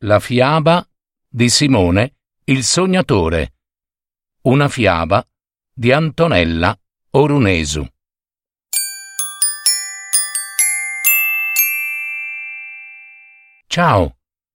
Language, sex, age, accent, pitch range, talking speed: Italian, male, 50-69, native, 100-155 Hz, 50 wpm